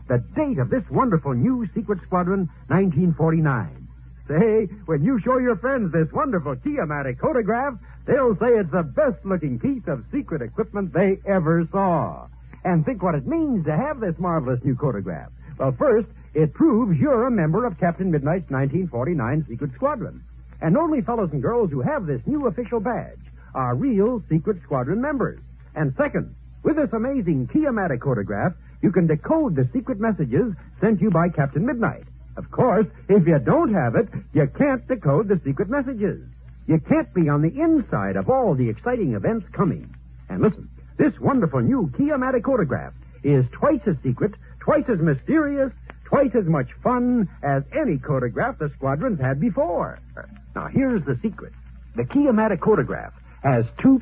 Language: English